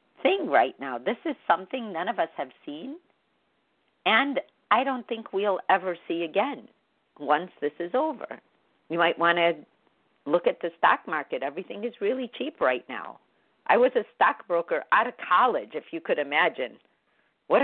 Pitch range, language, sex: 170-245 Hz, English, female